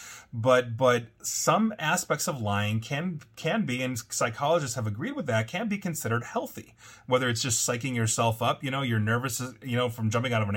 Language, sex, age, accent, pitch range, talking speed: English, male, 30-49, American, 110-140 Hz, 205 wpm